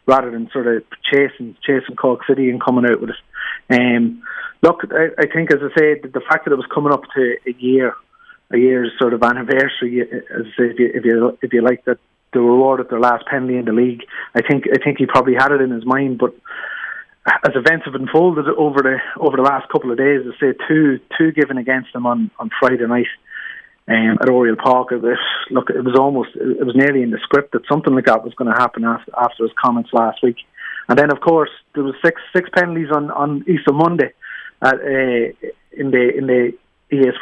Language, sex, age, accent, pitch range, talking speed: English, male, 30-49, Irish, 120-140 Hz, 225 wpm